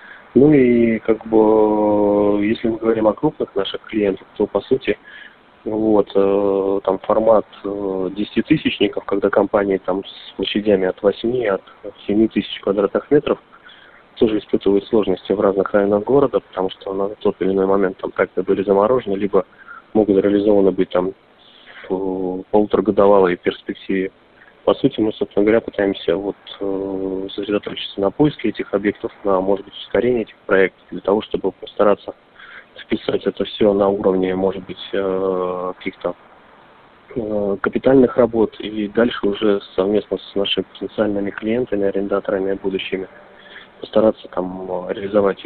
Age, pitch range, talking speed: 20-39, 95-110 Hz, 135 wpm